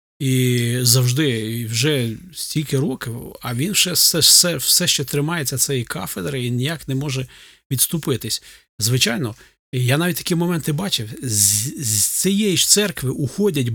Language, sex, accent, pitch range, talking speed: Ukrainian, male, native, 120-170 Hz, 145 wpm